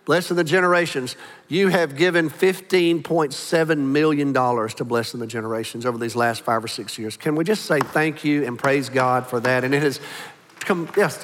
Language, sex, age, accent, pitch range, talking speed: English, male, 50-69, American, 130-170 Hz, 180 wpm